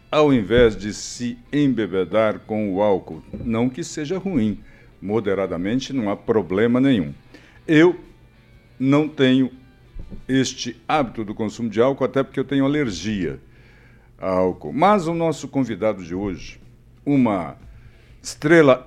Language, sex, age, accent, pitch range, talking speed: Portuguese, male, 60-79, Brazilian, 105-135 Hz, 130 wpm